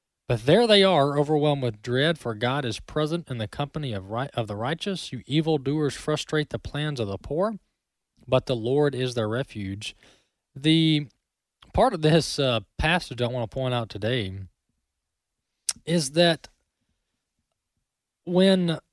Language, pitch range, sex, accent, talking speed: English, 120-160 Hz, male, American, 150 wpm